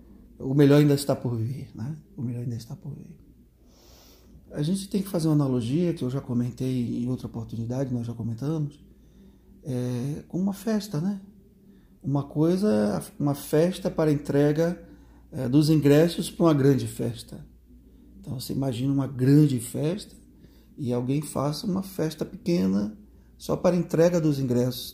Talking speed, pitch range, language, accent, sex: 155 wpm, 125-160 Hz, Portuguese, Brazilian, male